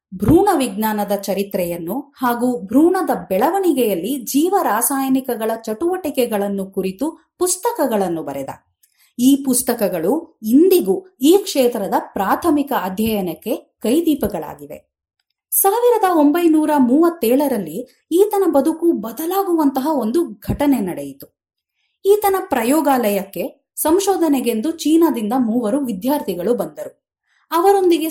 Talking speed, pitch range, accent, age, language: 75 wpm, 220-310 Hz, native, 30-49, Kannada